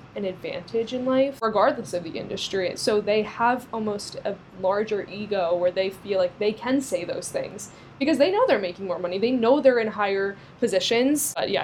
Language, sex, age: English, female, 10-29